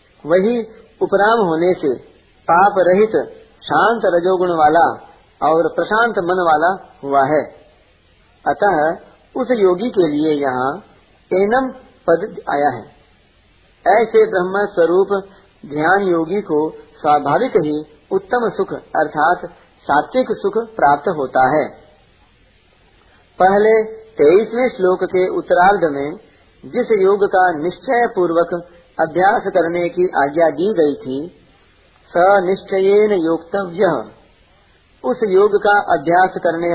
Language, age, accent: Hindi, 50-69, native